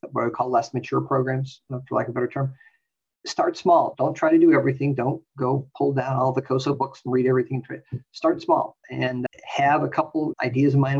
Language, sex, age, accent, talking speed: English, male, 50-69, American, 215 wpm